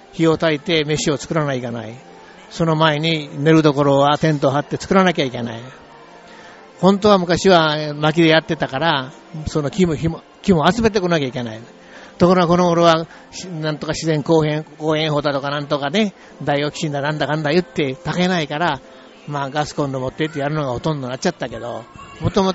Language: Japanese